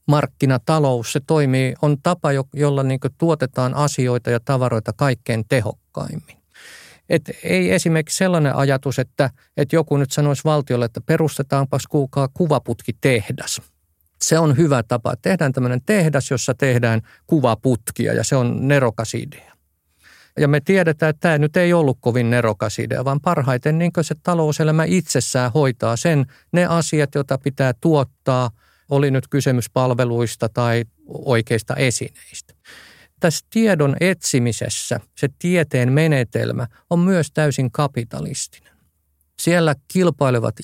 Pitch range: 125-160 Hz